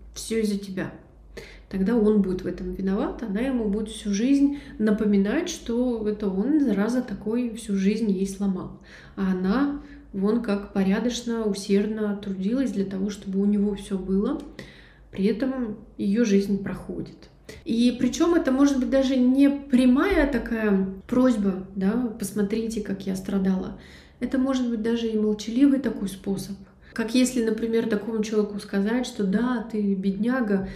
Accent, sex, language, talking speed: native, female, Russian, 150 wpm